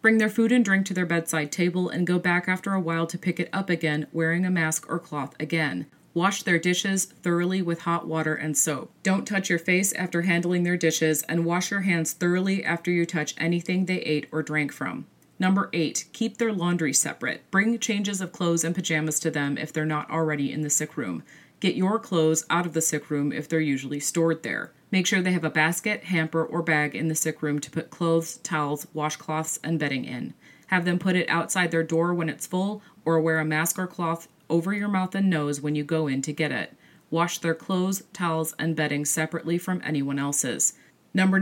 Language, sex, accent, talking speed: English, female, American, 220 wpm